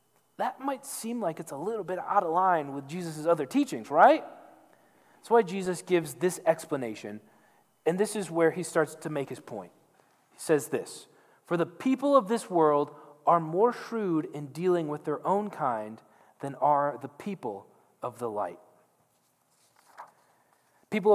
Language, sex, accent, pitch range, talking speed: English, male, American, 145-225 Hz, 165 wpm